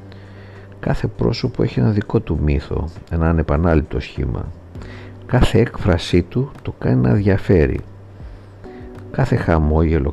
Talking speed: 115 wpm